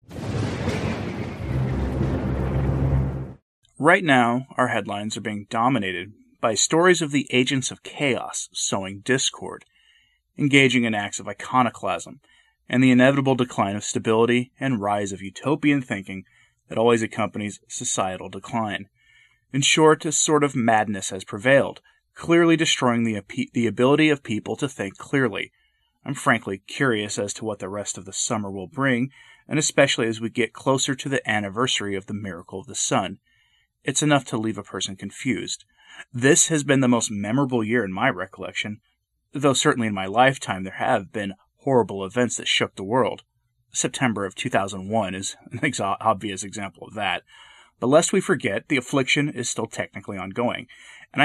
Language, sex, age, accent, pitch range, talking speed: English, male, 30-49, American, 100-140 Hz, 155 wpm